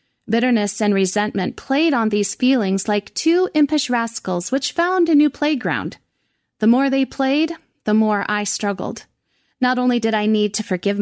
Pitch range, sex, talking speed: 200-255 Hz, female, 170 wpm